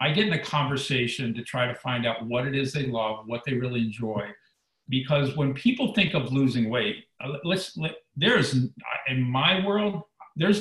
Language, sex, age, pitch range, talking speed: English, male, 50-69, 125-165 Hz, 180 wpm